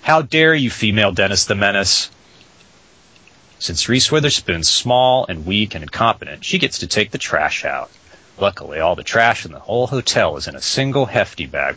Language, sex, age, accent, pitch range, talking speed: English, male, 30-49, American, 100-140 Hz, 185 wpm